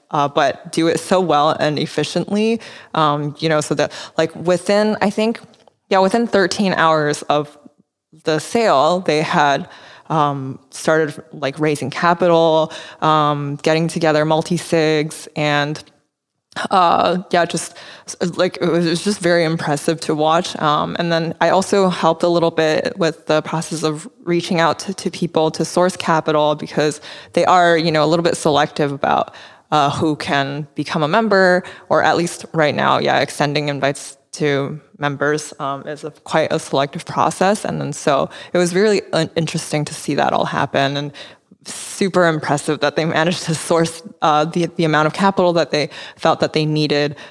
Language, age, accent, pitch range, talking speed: English, 20-39, American, 150-170 Hz, 170 wpm